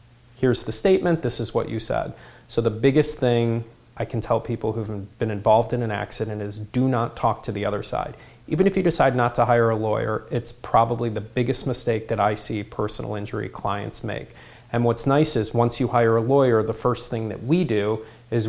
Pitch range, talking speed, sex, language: 105-120 Hz, 215 wpm, male, English